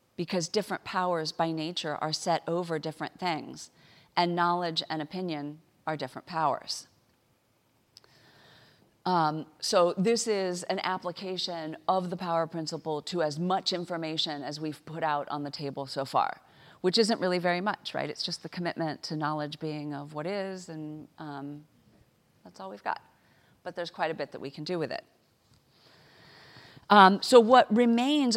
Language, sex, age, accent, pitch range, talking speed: English, female, 40-59, American, 150-185 Hz, 165 wpm